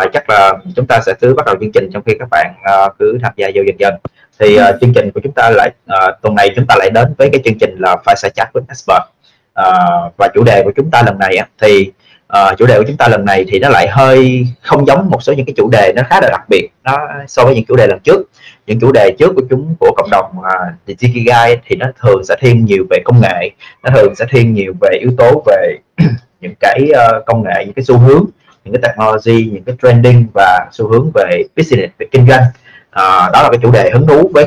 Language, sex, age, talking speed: Vietnamese, male, 20-39, 265 wpm